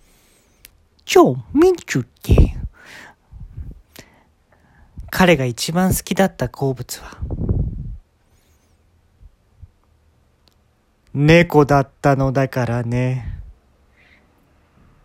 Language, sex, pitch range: Japanese, male, 115-165 Hz